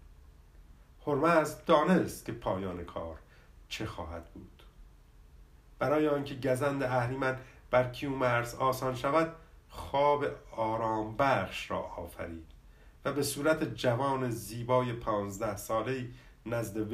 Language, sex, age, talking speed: Persian, male, 50-69, 105 wpm